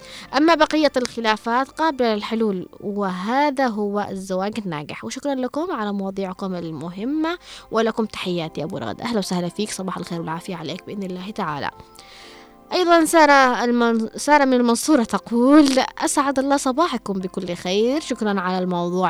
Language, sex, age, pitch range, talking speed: Arabic, female, 20-39, 190-255 Hz, 130 wpm